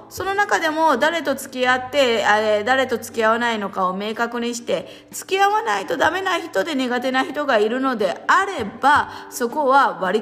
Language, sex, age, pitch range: Japanese, female, 20-39, 200-265 Hz